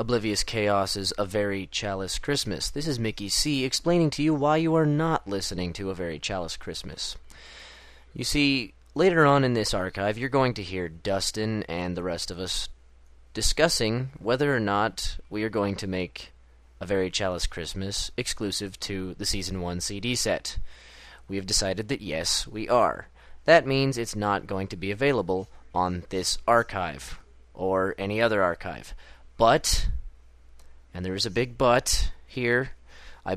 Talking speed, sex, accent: 165 wpm, male, American